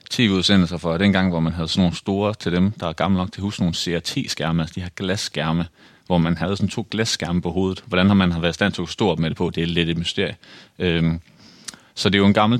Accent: native